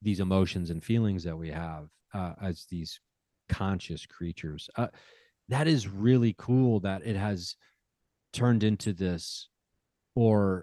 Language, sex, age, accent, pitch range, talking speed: English, male, 30-49, American, 95-115 Hz, 135 wpm